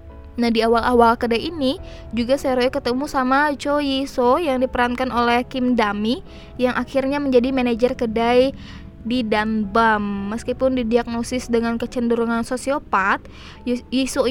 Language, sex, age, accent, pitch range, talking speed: Indonesian, female, 20-39, native, 235-265 Hz, 120 wpm